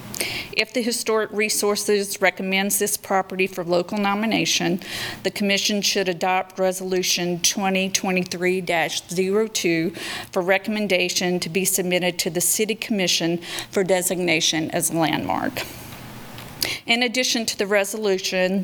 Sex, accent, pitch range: female, American, 180-200 Hz